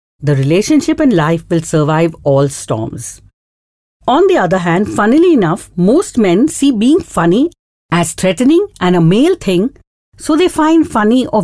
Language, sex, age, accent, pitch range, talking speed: English, female, 50-69, Indian, 150-230 Hz, 155 wpm